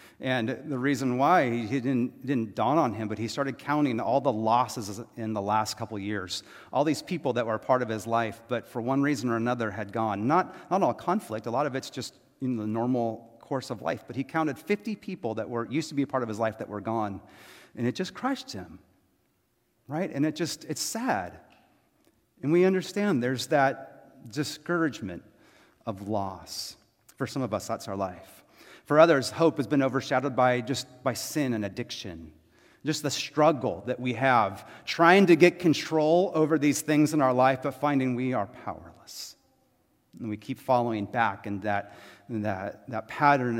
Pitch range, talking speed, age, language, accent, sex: 110-140 Hz, 195 wpm, 30-49, English, American, male